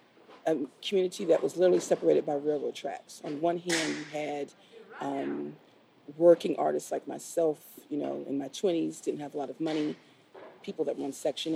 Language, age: English, 40-59